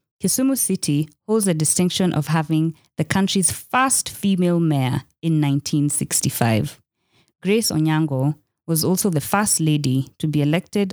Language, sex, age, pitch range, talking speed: English, female, 20-39, 140-175 Hz, 130 wpm